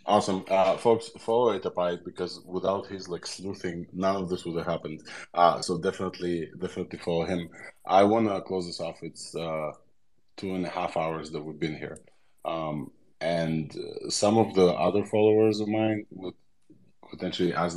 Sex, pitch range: male, 80-95 Hz